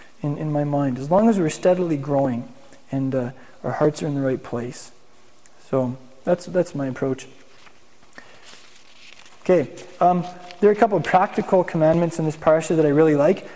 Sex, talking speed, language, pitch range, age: male, 175 wpm, English, 150-200 Hz, 20-39